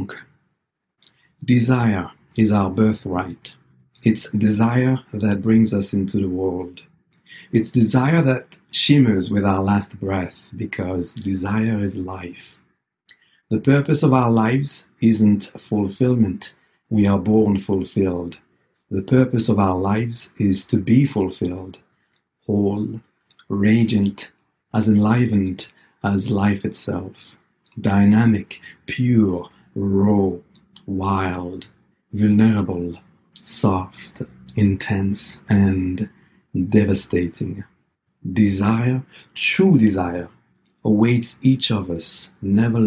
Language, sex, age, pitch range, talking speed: English, male, 50-69, 95-110 Hz, 95 wpm